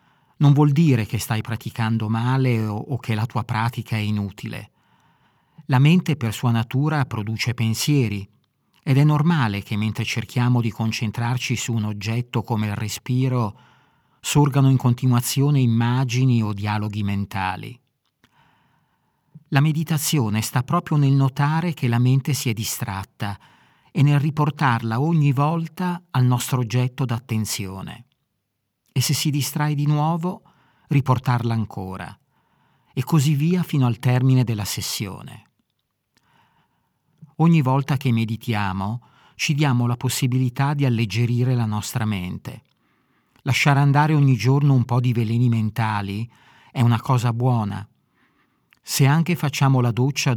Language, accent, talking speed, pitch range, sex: Italian, native, 130 wpm, 110-145 Hz, male